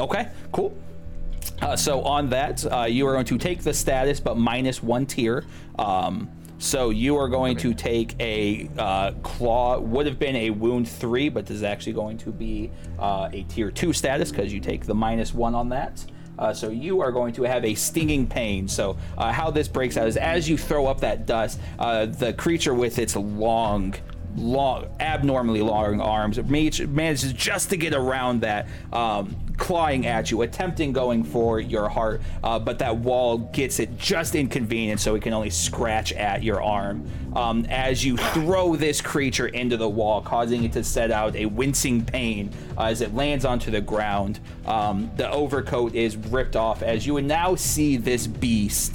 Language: English